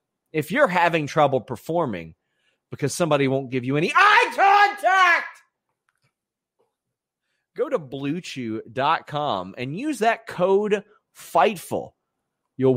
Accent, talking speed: American, 105 wpm